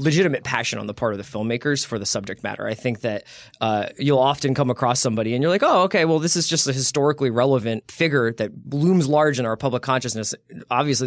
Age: 20-39